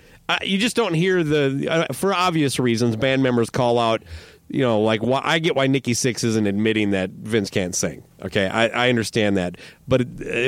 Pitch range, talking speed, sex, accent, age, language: 110-140 Hz, 210 wpm, male, American, 40-59, English